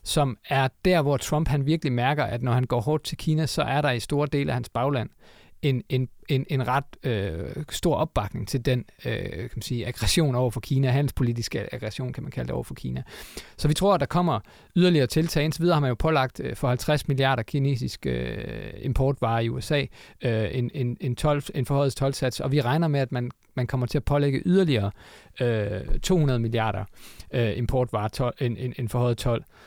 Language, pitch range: Danish, 120-150 Hz